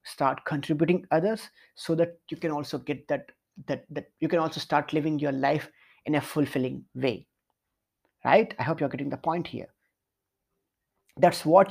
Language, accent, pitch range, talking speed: English, Indian, 140-170 Hz, 170 wpm